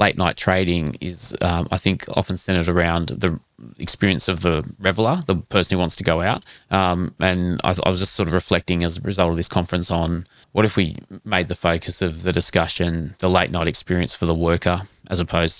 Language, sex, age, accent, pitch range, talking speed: English, male, 20-39, Australian, 85-95 Hz, 220 wpm